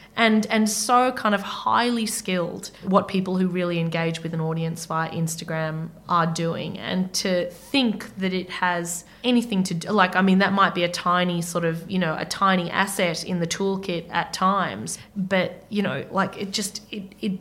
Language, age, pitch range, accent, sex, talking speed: English, 20-39, 170-195 Hz, Australian, female, 195 wpm